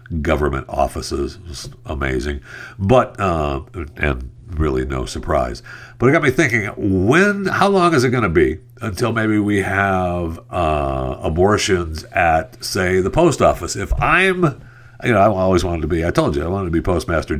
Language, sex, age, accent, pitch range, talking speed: English, male, 60-79, American, 80-120 Hz, 170 wpm